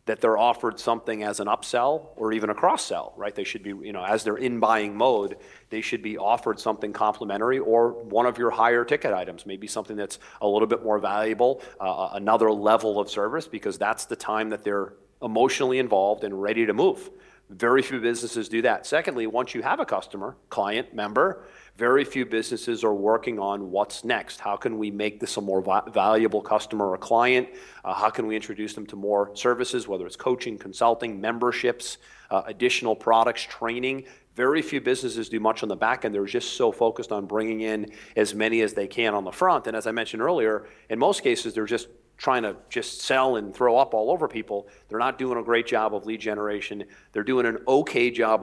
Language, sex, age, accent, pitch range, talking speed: English, male, 40-59, American, 105-125 Hz, 210 wpm